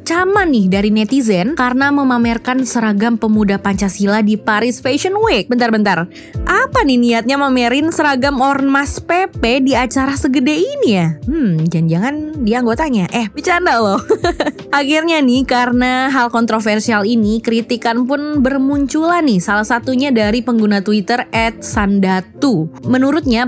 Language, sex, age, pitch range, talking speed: Indonesian, female, 20-39, 210-275 Hz, 130 wpm